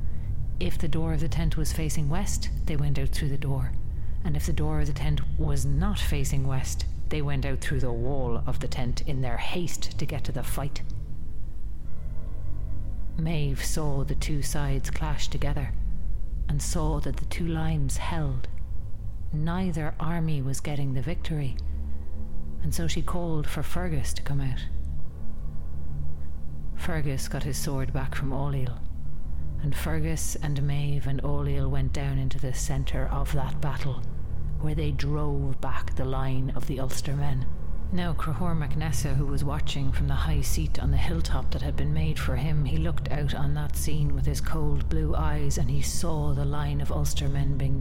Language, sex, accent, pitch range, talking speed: English, female, Irish, 70-95 Hz, 175 wpm